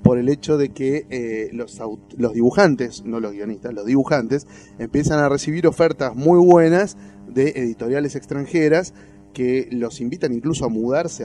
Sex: male